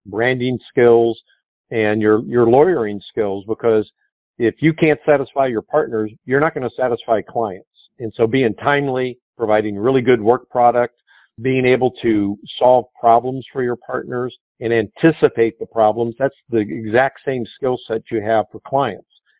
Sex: male